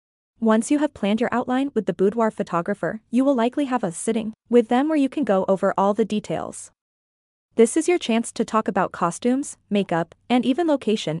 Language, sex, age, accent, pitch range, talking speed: English, female, 20-39, American, 195-245 Hz, 205 wpm